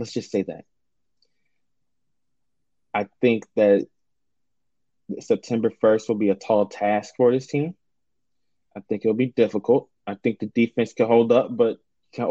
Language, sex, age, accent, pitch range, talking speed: English, male, 20-39, American, 110-135 Hz, 155 wpm